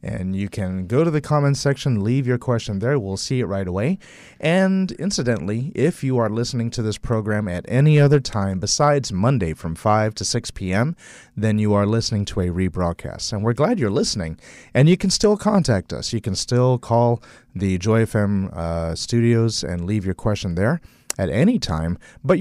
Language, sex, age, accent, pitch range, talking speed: English, male, 30-49, American, 95-130 Hz, 195 wpm